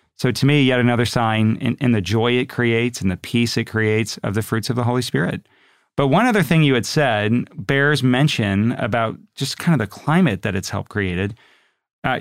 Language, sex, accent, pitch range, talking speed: English, male, American, 105-135 Hz, 215 wpm